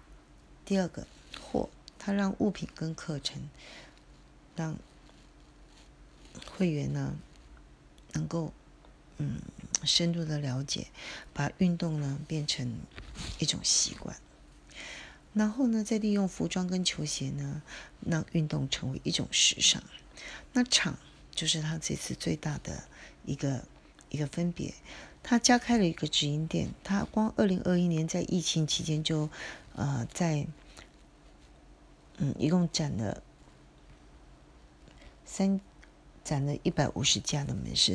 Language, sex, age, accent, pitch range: Chinese, female, 40-59, native, 145-185 Hz